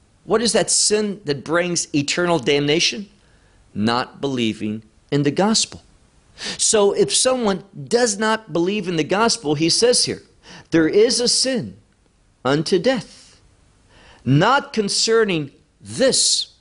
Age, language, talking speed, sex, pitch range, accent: 50-69, English, 125 wpm, male, 145-205 Hz, American